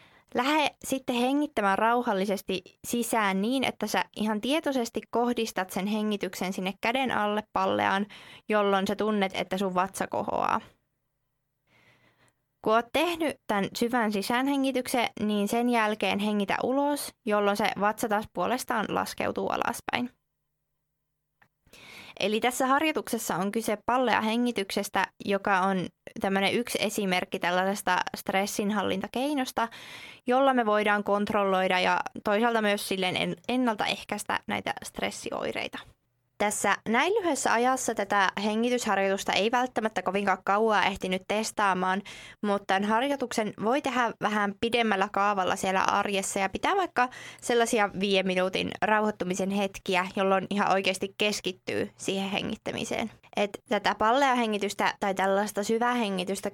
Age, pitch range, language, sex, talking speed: 20-39, 195-235 Hz, Finnish, female, 115 wpm